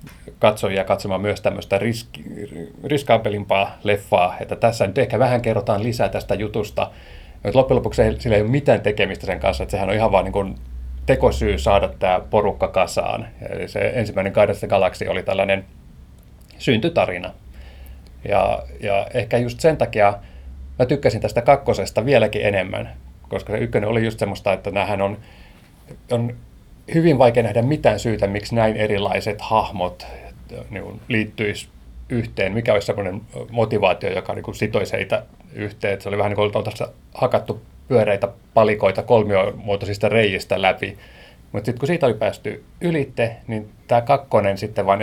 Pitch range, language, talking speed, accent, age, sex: 95-115 Hz, Finnish, 155 wpm, native, 30-49, male